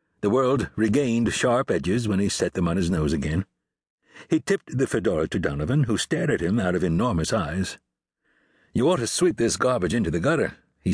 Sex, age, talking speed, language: male, 60-79, 205 wpm, English